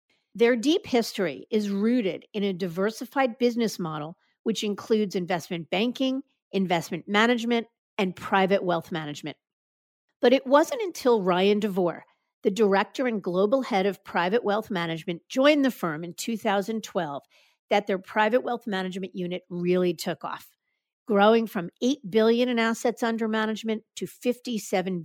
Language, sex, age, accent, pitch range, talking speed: English, female, 50-69, American, 185-235 Hz, 140 wpm